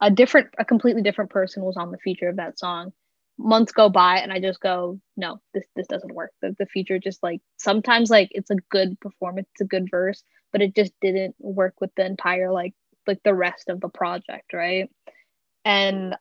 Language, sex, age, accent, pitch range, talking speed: English, female, 10-29, American, 185-210 Hz, 210 wpm